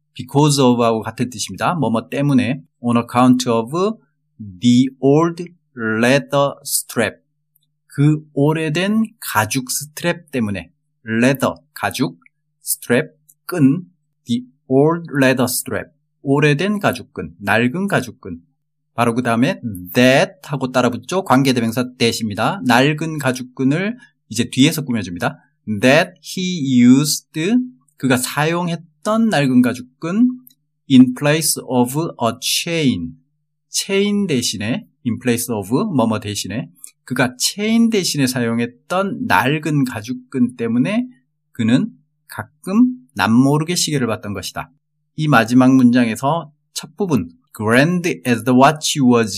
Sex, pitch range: male, 125-155 Hz